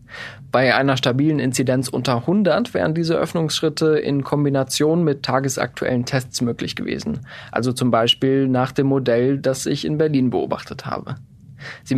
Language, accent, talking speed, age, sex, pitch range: German, German, 145 wpm, 20-39, male, 125-155 Hz